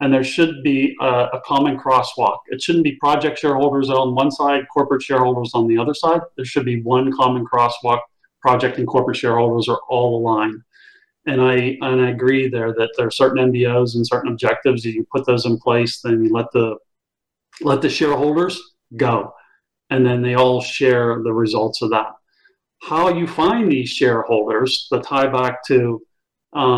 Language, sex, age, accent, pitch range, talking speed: English, male, 40-59, American, 120-135 Hz, 185 wpm